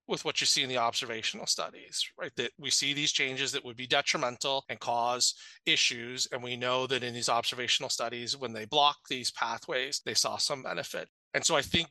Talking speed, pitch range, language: 210 wpm, 125-140 Hz, English